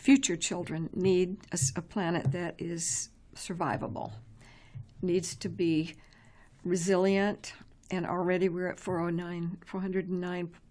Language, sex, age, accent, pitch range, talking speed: English, female, 60-79, American, 165-195 Hz, 105 wpm